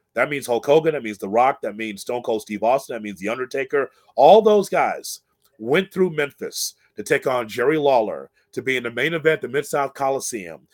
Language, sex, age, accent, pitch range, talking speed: English, male, 30-49, American, 115-155 Hz, 210 wpm